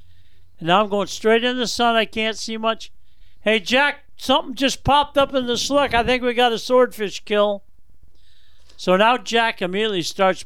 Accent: American